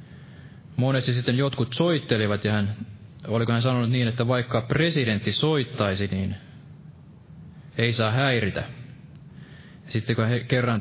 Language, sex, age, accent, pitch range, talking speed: Finnish, male, 20-39, native, 115-150 Hz, 120 wpm